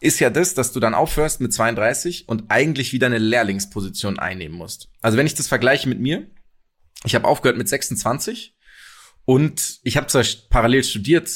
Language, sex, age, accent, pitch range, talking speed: German, male, 20-39, German, 105-130 Hz, 180 wpm